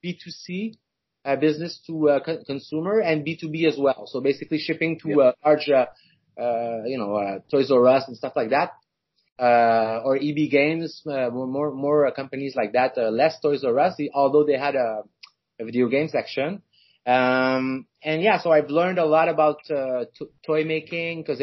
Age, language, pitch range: 30-49, English, 135-165 Hz